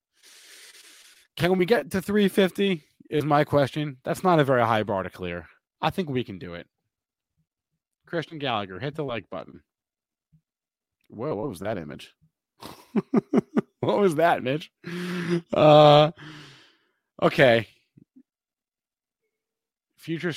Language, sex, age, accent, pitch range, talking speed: English, male, 30-49, American, 110-160 Hz, 115 wpm